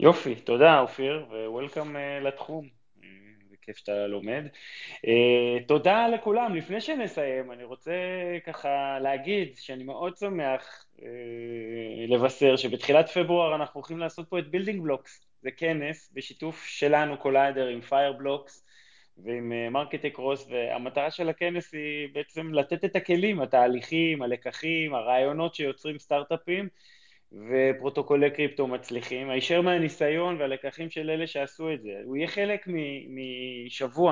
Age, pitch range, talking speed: 20-39, 130-165 Hz, 125 wpm